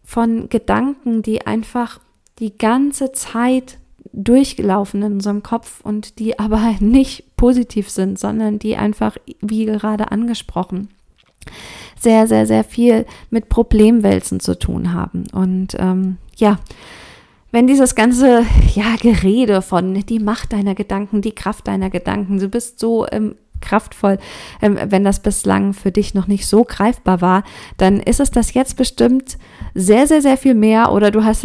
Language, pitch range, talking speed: German, 200-235 Hz, 145 wpm